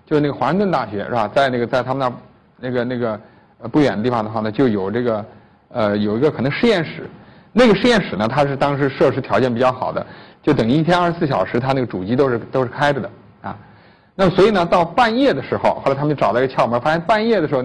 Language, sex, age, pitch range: Chinese, male, 50-69, 120-170 Hz